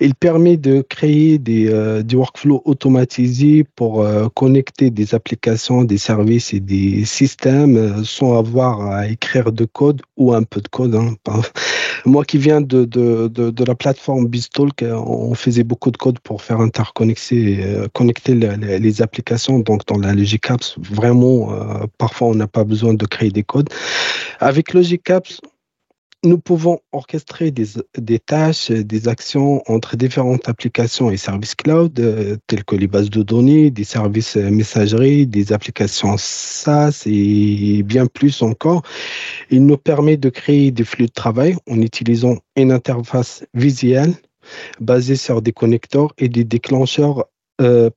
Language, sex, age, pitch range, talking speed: French, male, 40-59, 110-135 Hz, 155 wpm